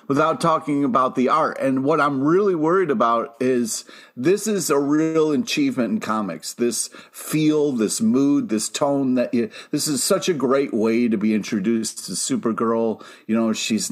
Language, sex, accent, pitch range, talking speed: English, male, American, 110-150 Hz, 175 wpm